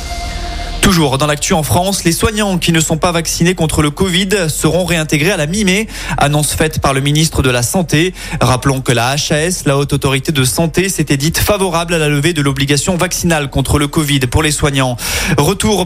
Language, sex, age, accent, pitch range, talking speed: French, male, 20-39, French, 140-165 Hz, 200 wpm